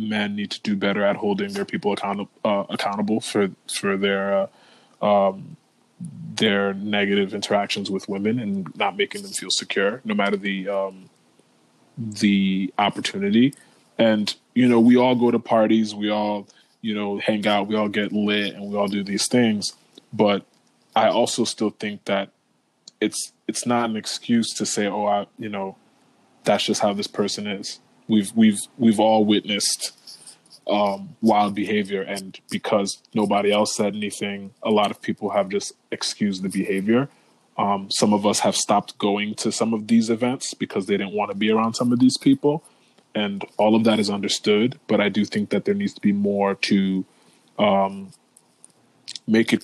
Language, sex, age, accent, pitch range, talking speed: English, male, 20-39, American, 100-115 Hz, 180 wpm